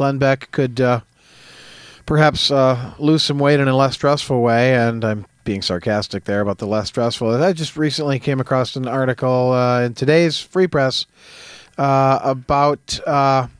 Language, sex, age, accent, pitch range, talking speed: English, male, 40-59, American, 125-150 Hz, 165 wpm